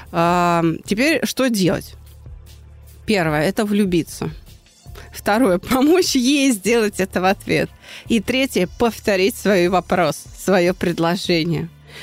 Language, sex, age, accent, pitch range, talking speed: Russian, female, 30-49, native, 185-235 Hz, 100 wpm